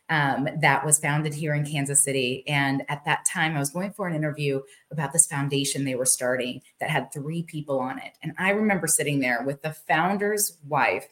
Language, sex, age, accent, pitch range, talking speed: English, female, 30-49, American, 135-165 Hz, 210 wpm